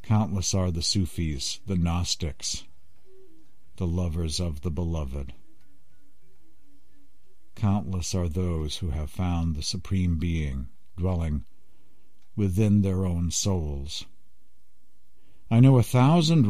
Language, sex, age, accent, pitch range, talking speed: English, male, 60-79, American, 80-110 Hz, 105 wpm